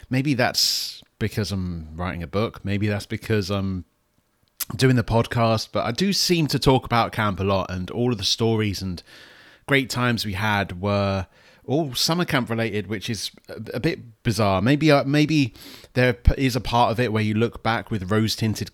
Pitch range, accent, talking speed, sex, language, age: 95-120 Hz, British, 190 wpm, male, English, 30-49